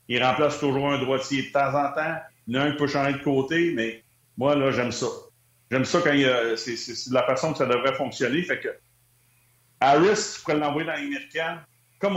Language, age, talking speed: French, 30-49, 235 wpm